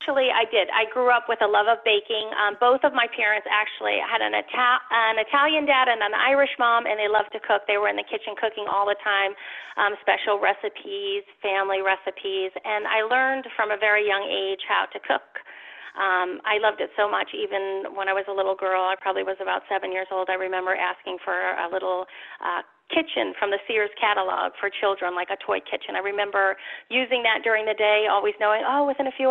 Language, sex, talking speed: English, female, 220 wpm